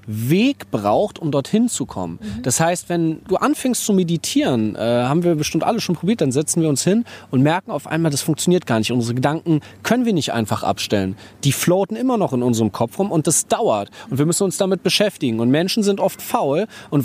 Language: German